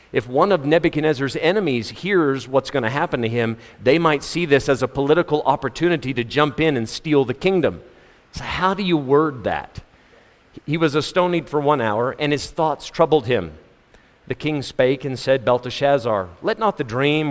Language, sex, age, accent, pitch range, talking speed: English, male, 50-69, American, 120-150 Hz, 185 wpm